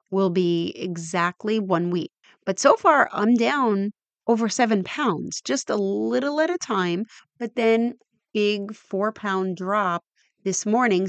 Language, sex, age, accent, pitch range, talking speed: English, female, 30-49, American, 175-215 Hz, 145 wpm